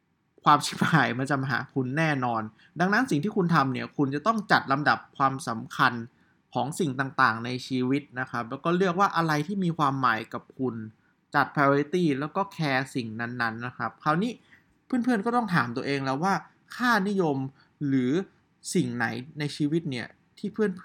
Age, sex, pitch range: 20-39, male, 120-160 Hz